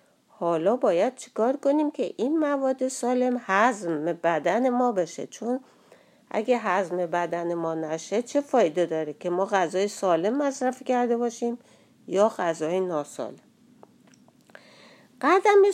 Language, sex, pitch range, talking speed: Persian, female, 215-280 Hz, 120 wpm